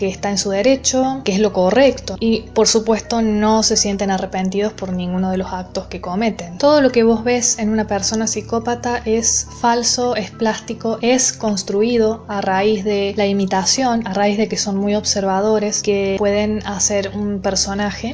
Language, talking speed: Spanish, 180 wpm